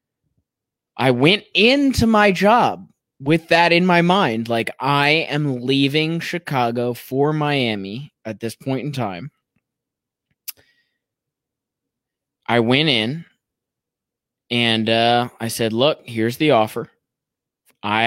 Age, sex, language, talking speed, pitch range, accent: 20-39, male, English, 115 wpm, 110-145 Hz, American